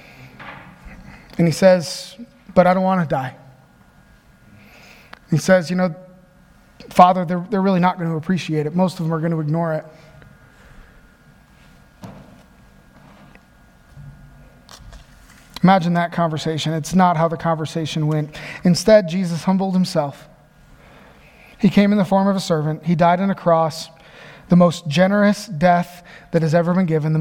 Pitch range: 150-180 Hz